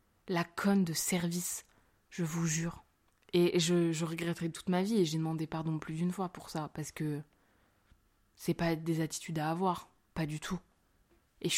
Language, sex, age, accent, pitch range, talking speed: French, female, 20-39, French, 160-195 Hz, 185 wpm